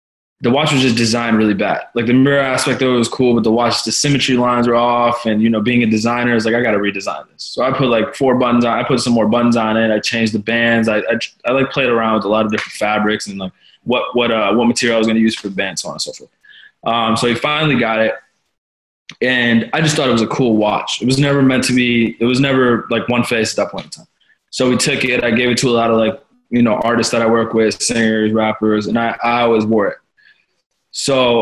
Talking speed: 275 wpm